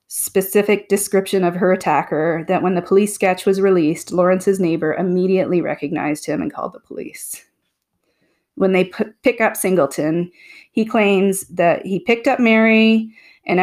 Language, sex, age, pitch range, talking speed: English, female, 30-49, 180-220 Hz, 150 wpm